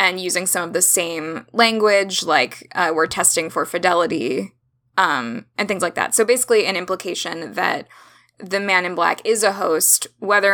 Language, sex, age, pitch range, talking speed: English, female, 10-29, 160-195 Hz, 175 wpm